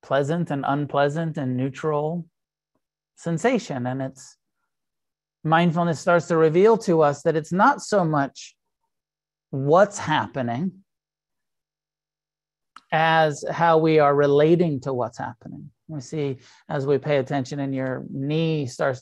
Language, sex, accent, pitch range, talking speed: English, male, American, 145-175 Hz, 125 wpm